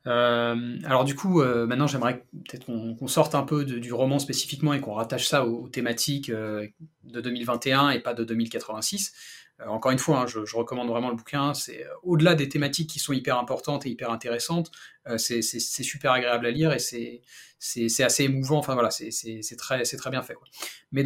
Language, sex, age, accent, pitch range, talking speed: French, male, 30-49, French, 120-155 Hz, 225 wpm